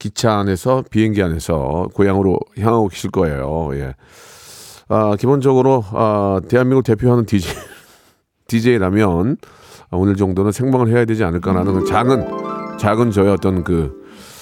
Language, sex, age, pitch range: Korean, male, 40-59, 90-120 Hz